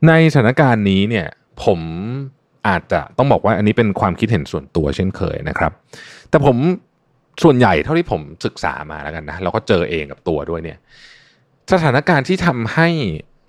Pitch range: 95-135 Hz